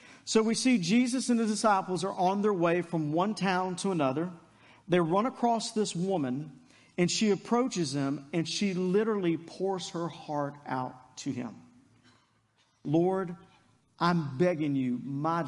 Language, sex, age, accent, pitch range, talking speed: English, male, 50-69, American, 130-185 Hz, 150 wpm